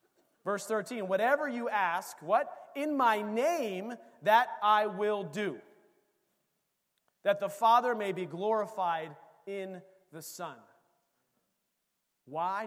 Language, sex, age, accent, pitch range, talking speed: English, male, 40-59, American, 185-240 Hz, 110 wpm